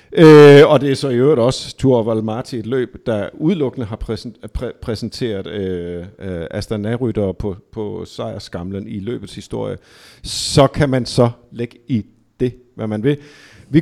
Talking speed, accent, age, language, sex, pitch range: 175 wpm, native, 50-69, Danish, male, 105-145 Hz